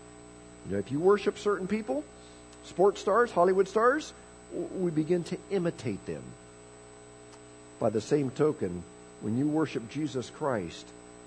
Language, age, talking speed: English, 50-69, 120 wpm